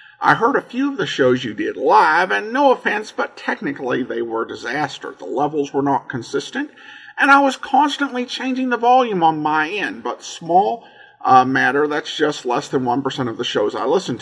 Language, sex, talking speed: English, male, 205 wpm